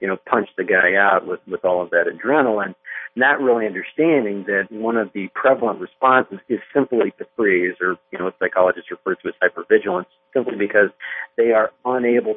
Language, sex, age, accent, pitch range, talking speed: English, male, 50-69, American, 95-135 Hz, 185 wpm